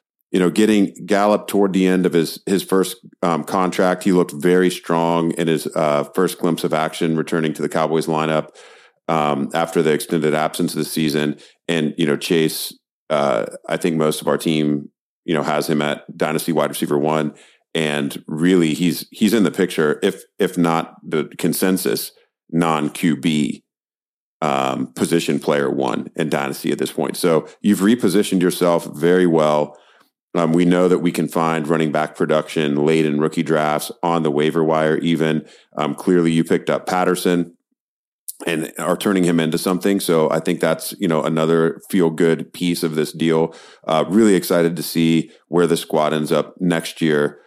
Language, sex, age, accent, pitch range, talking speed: English, male, 40-59, American, 80-90 Hz, 180 wpm